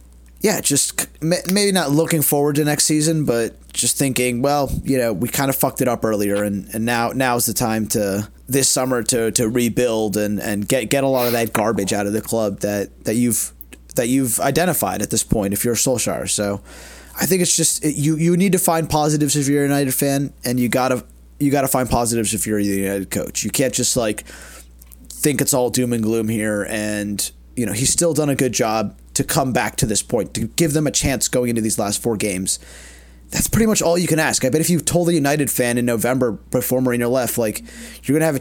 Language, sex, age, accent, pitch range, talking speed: English, male, 30-49, American, 105-145 Hz, 235 wpm